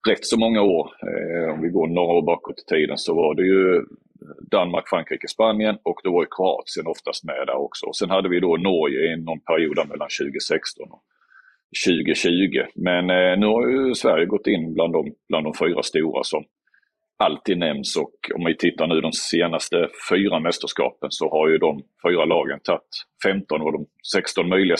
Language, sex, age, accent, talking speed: English, male, 40-59, Swedish, 180 wpm